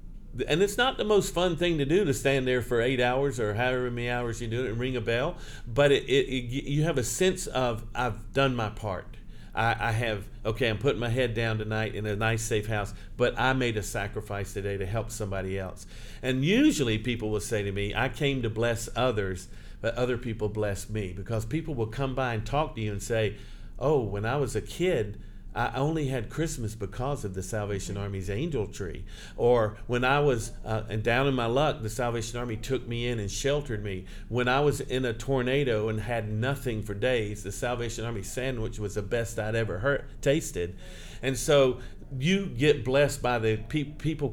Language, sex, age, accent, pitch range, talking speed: English, male, 50-69, American, 105-130 Hz, 215 wpm